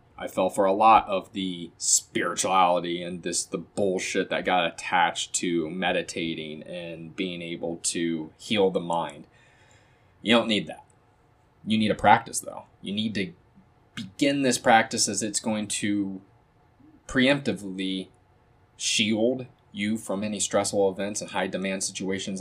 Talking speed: 145 wpm